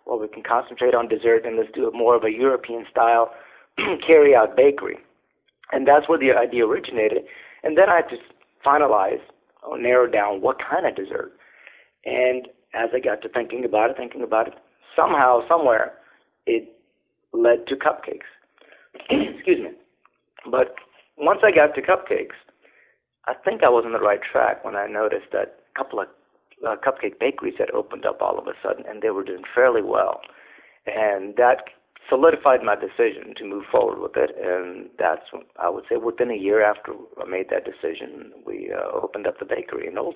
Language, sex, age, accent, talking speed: English, male, 40-59, American, 180 wpm